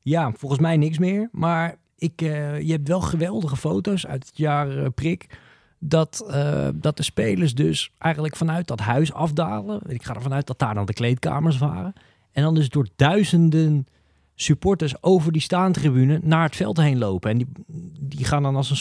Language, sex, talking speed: Dutch, male, 190 wpm